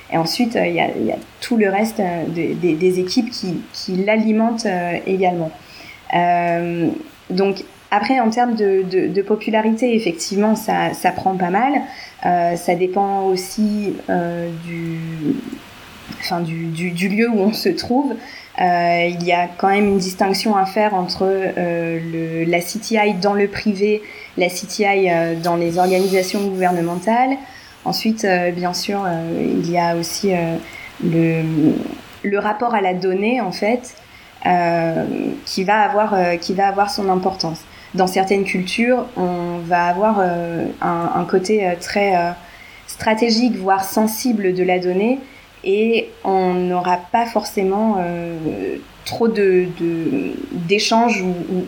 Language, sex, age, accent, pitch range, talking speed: French, female, 20-39, French, 175-215 Hz, 145 wpm